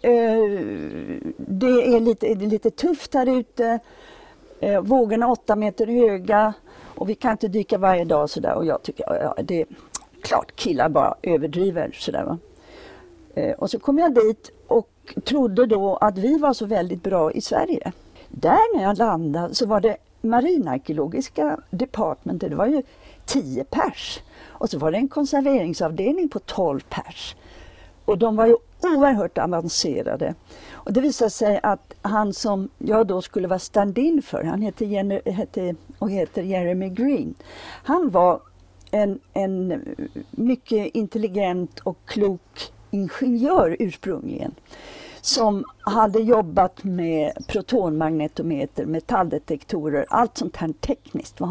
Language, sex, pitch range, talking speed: Swedish, female, 185-260 Hz, 145 wpm